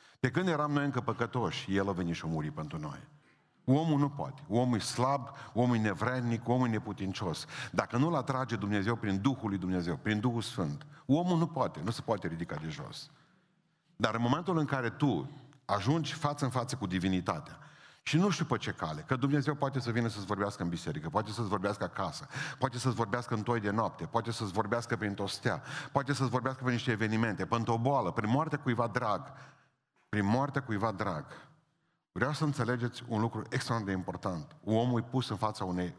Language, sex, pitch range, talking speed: Romanian, male, 110-145 Hz, 200 wpm